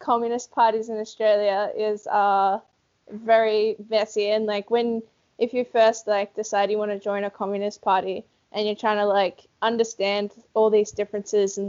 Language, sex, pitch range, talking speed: English, female, 210-235 Hz, 170 wpm